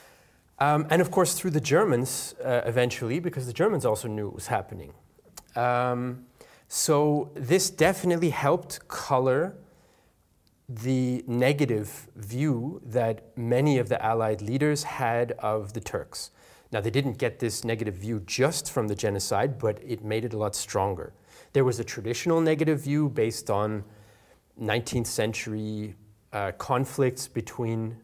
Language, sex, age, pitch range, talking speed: English, male, 30-49, 105-135 Hz, 145 wpm